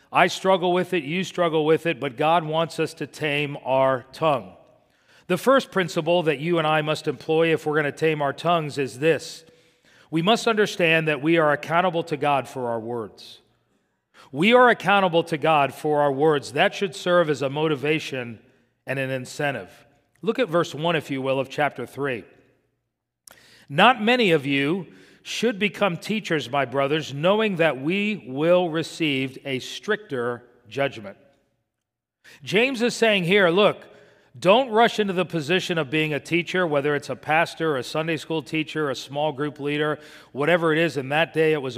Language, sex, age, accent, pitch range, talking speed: English, male, 40-59, American, 140-175 Hz, 180 wpm